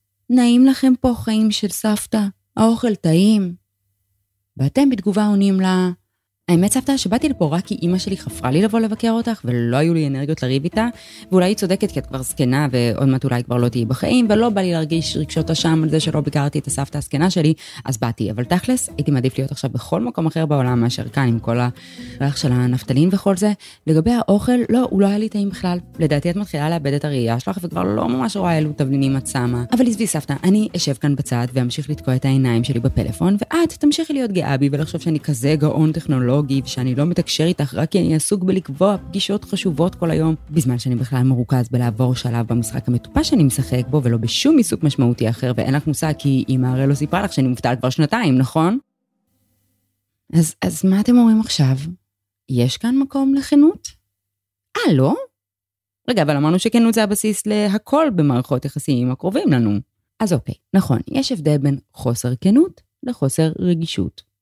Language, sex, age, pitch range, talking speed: Hebrew, female, 20-39, 125-195 Hz, 170 wpm